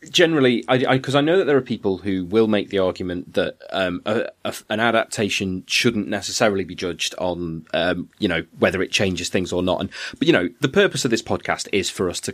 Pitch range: 95-130 Hz